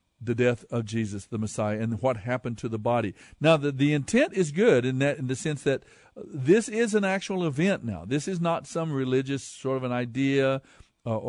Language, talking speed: English, 215 wpm